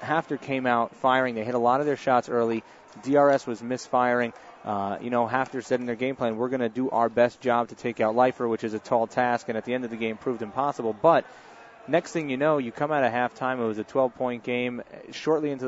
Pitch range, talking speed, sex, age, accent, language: 115-135 Hz, 255 wpm, male, 30-49, American, English